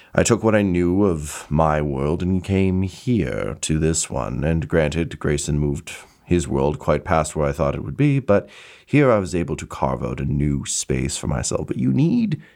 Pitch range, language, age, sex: 75-105 Hz, English, 30-49, male